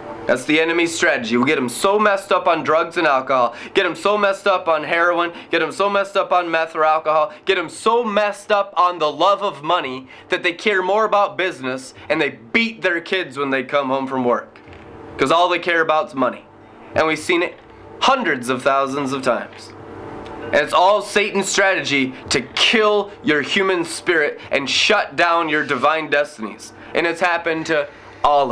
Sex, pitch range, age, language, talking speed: male, 145-180 Hz, 20-39, English, 200 wpm